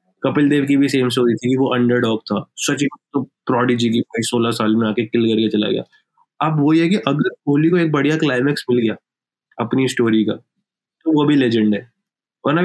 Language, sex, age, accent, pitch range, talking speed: Hindi, male, 20-39, native, 125-160 Hz, 215 wpm